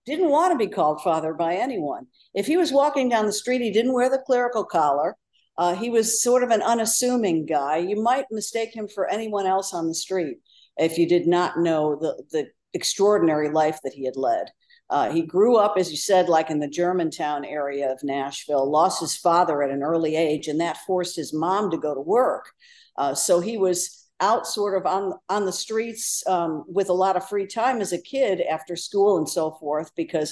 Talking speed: 215 wpm